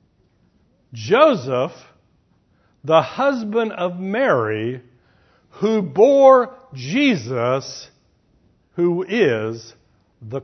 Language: English